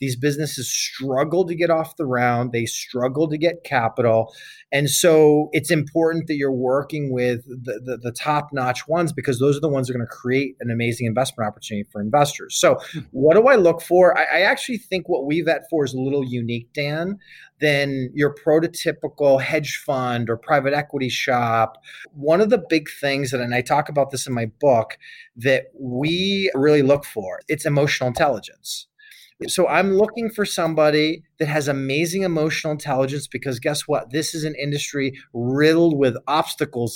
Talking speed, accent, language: 180 wpm, American, English